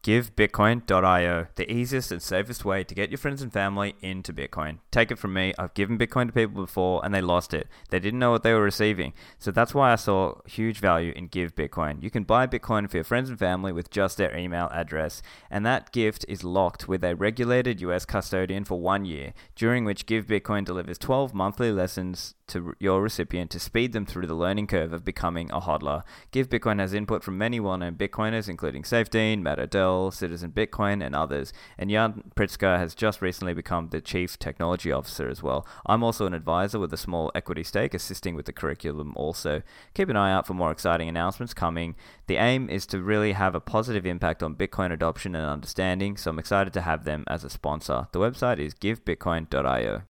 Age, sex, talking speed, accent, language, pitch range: 20-39, male, 205 wpm, Australian, English, 85-110 Hz